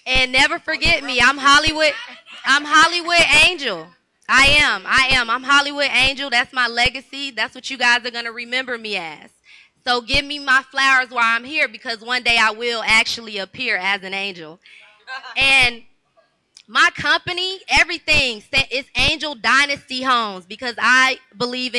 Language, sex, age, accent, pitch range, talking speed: English, female, 20-39, American, 235-300 Hz, 160 wpm